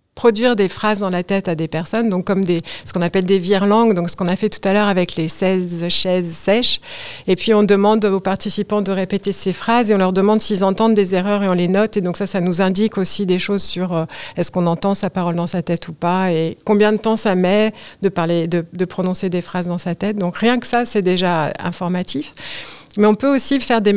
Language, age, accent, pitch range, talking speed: French, 50-69, French, 185-220 Hz, 255 wpm